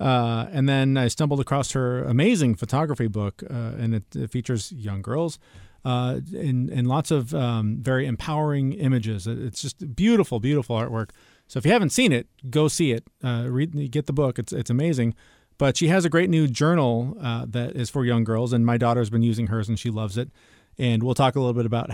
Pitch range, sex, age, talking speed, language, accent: 120-150 Hz, male, 40-59, 215 wpm, English, American